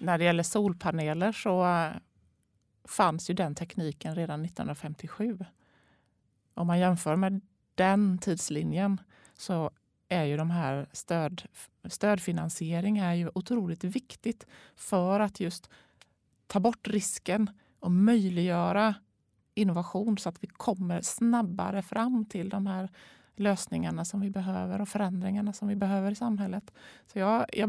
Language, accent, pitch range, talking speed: Swedish, native, 170-205 Hz, 130 wpm